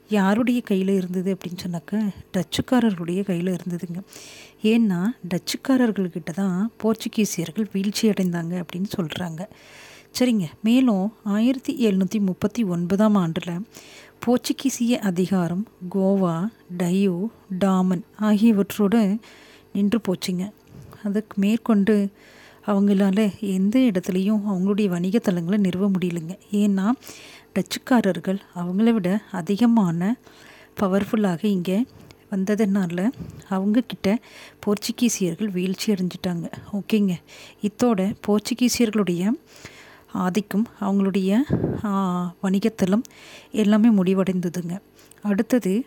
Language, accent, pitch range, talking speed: Tamil, native, 185-220 Hz, 75 wpm